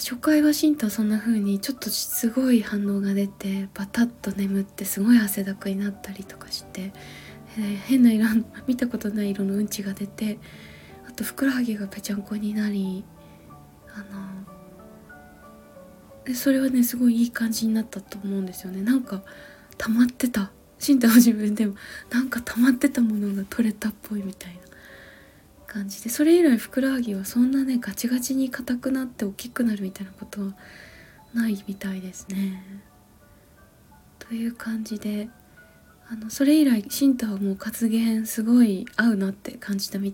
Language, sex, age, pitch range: Japanese, female, 20-39, 200-245 Hz